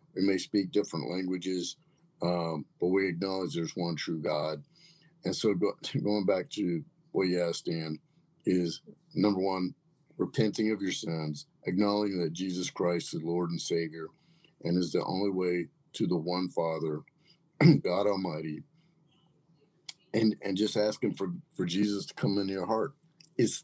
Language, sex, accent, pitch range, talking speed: English, male, American, 95-155 Hz, 155 wpm